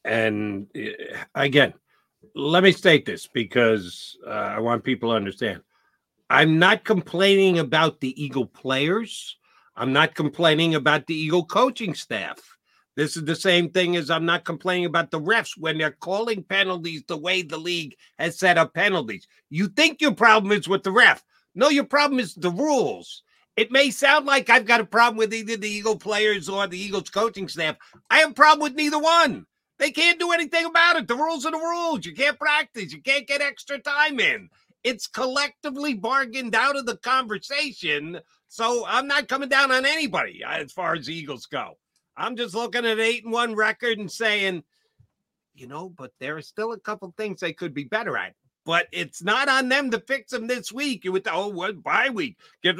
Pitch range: 170-265 Hz